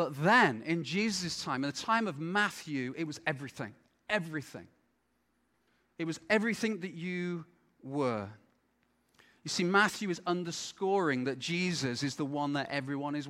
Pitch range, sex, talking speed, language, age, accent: 145-185 Hz, male, 150 wpm, English, 30-49, British